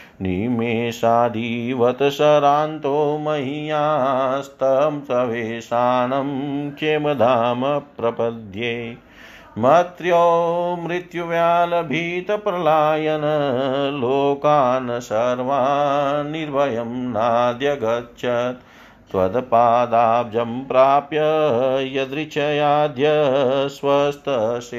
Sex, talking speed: male, 35 wpm